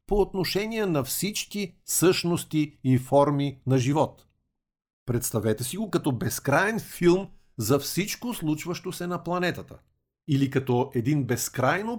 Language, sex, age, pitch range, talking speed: Bulgarian, male, 50-69, 130-180 Hz, 125 wpm